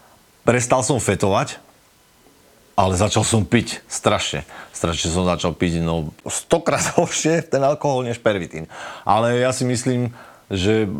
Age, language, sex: 40-59, Slovak, male